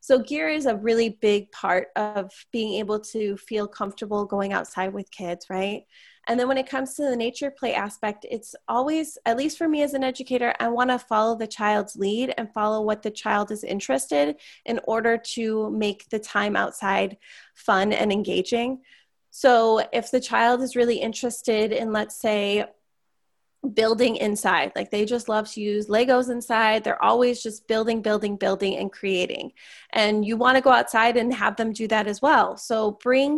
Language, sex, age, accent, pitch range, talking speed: English, female, 20-39, American, 210-255 Hz, 185 wpm